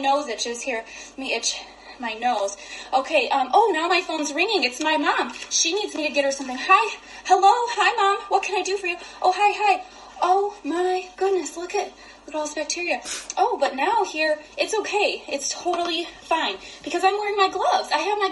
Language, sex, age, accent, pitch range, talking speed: English, female, 10-29, American, 275-365 Hz, 200 wpm